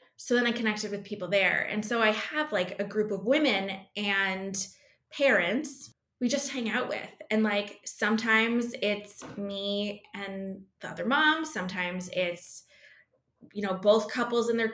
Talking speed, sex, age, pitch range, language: 165 wpm, female, 20-39, 200-235 Hz, English